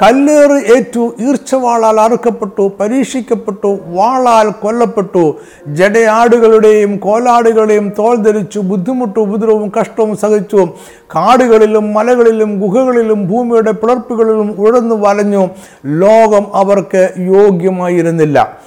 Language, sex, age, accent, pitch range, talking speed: Malayalam, male, 50-69, native, 195-235 Hz, 80 wpm